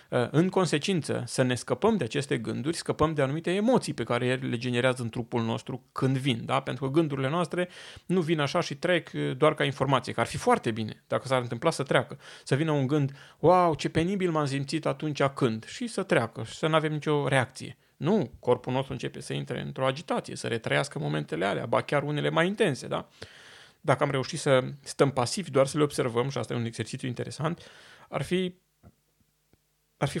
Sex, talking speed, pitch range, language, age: male, 205 wpm, 130-170 Hz, Romanian, 30-49